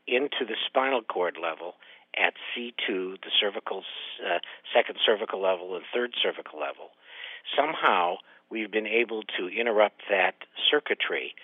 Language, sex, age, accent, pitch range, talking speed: English, male, 50-69, American, 105-140 Hz, 130 wpm